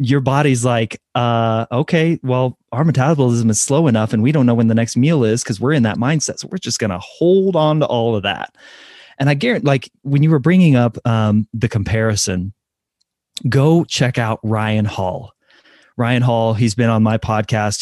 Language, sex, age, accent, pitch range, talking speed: English, male, 30-49, American, 110-125 Hz, 200 wpm